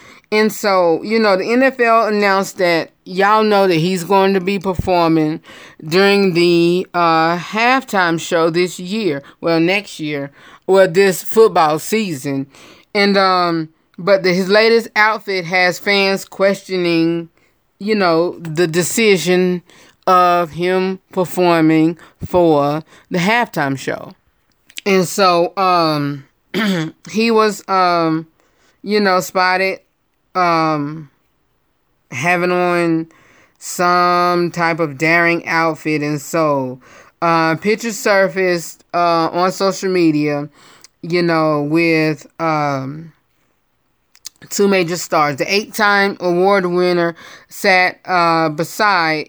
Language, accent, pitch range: English, American, 160-195 Hz